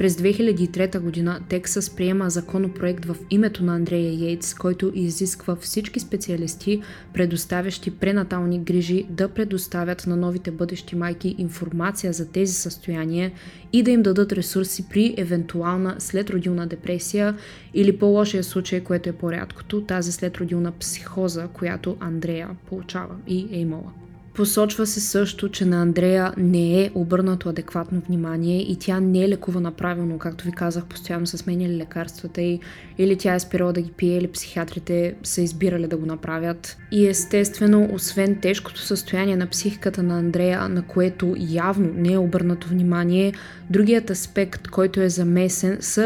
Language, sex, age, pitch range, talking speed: Bulgarian, female, 20-39, 175-195 Hz, 150 wpm